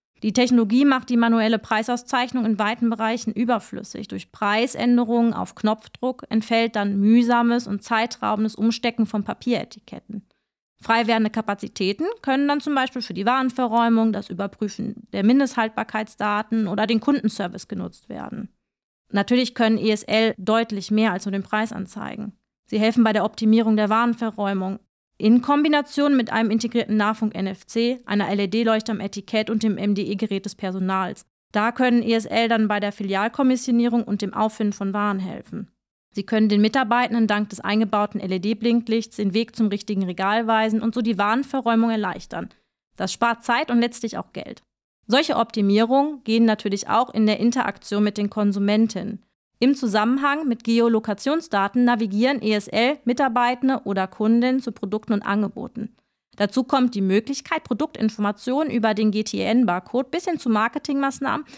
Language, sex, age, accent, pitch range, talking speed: German, female, 30-49, German, 210-240 Hz, 145 wpm